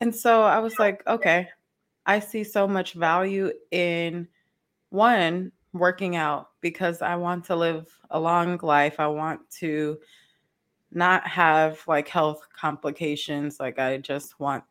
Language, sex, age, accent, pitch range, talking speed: English, female, 20-39, American, 160-200 Hz, 145 wpm